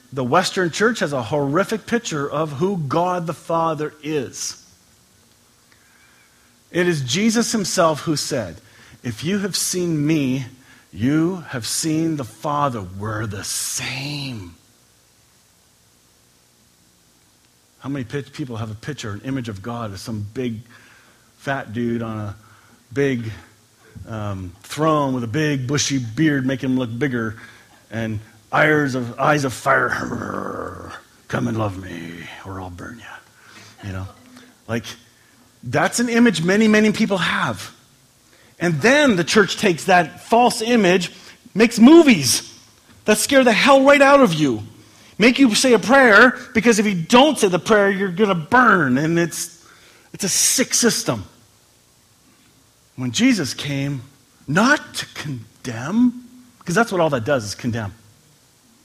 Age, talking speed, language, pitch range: 40-59, 140 wpm, English, 115-190 Hz